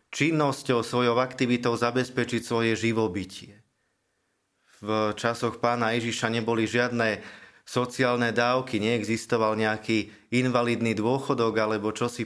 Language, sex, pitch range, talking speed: Slovak, male, 105-130 Hz, 100 wpm